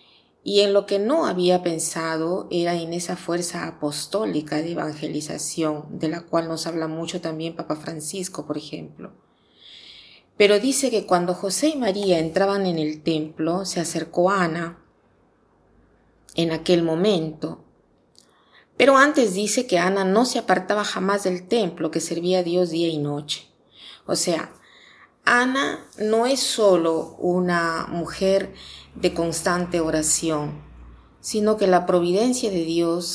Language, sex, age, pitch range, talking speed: Spanish, female, 30-49, 160-190 Hz, 140 wpm